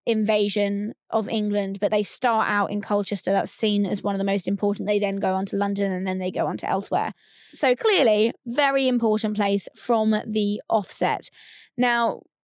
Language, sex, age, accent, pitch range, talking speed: English, female, 20-39, British, 210-245 Hz, 190 wpm